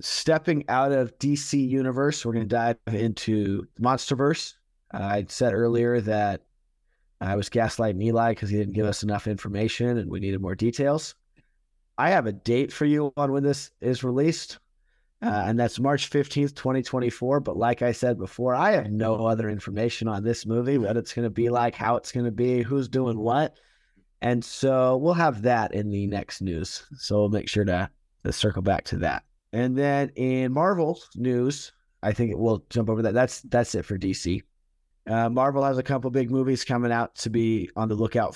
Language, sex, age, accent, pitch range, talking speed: English, male, 30-49, American, 105-130 Hz, 195 wpm